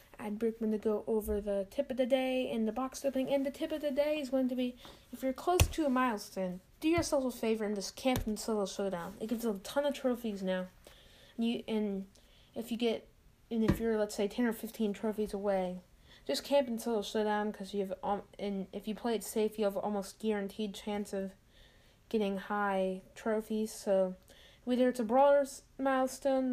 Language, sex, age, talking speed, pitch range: English, female, 10-29, 210 wpm, 200-245 Hz